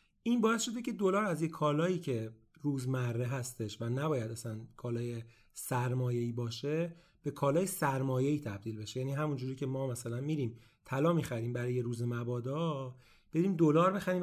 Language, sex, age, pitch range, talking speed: Persian, male, 30-49, 120-155 Hz, 155 wpm